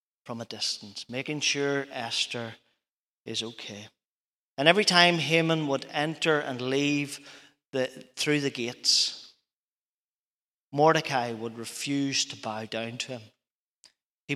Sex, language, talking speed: male, English, 120 wpm